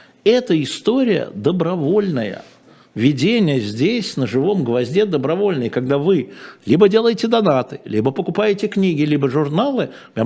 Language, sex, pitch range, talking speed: Russian, male, 115-180 Hz, 115 wpm